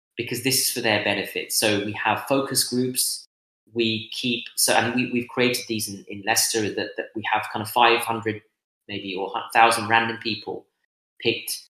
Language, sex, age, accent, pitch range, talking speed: English, male, 30-49, British, 105-130 Hz, 170 wpm